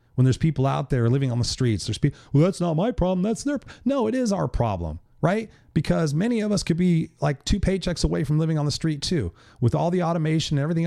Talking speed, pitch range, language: 255 wpm, 120-160 Hz, English